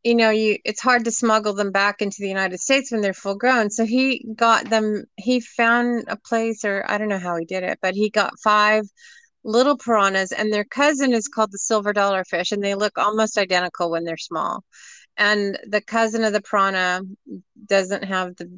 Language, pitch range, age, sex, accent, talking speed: English, 190-225 Hz, 30-49, female, American, 210 wpm